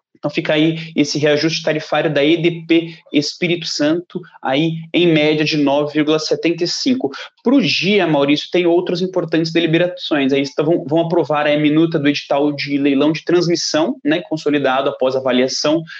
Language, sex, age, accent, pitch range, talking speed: Portuguese, male, 20-39, Brazilian, 150-175 Hz, 150 wpm